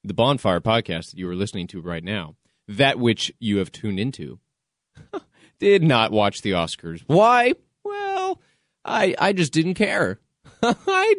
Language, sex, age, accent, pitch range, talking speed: English, male, 30-49, American, 95-145 Hz, 155 wpm